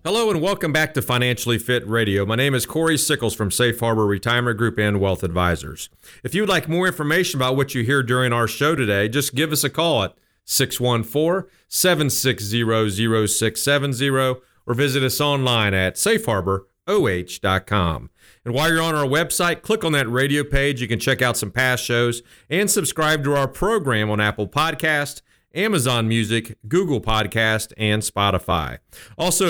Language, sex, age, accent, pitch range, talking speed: English, male, 40-59, American, 115-155 Hz, 165 wpm